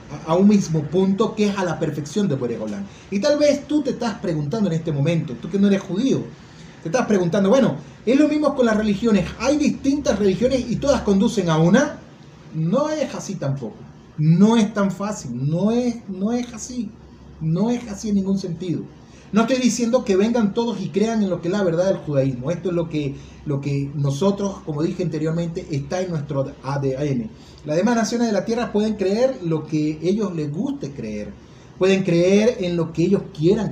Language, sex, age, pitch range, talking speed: Spanish, male, 30-49, 155-210 Hz, 200 wpm